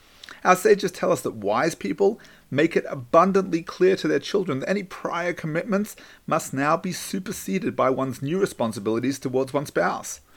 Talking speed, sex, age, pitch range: 170 wpm, male, 40-59, 130-195 Hz